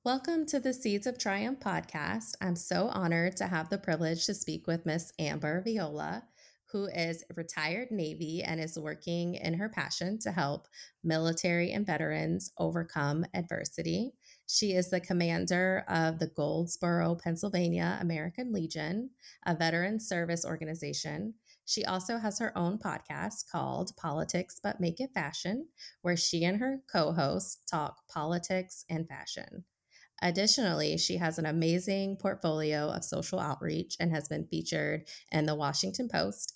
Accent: American